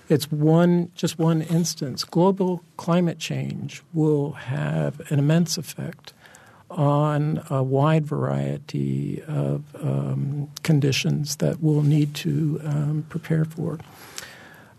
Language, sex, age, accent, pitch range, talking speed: English, male, 50-69, American, 145-165 Hz, 115 wpm